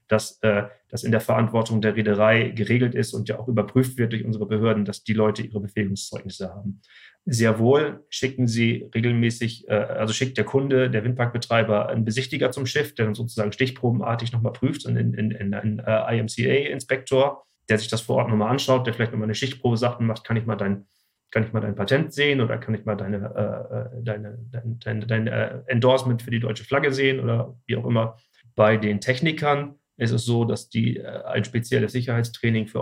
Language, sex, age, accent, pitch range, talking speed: German, male, 30-49, German, 105-120 Hz, 205 wpm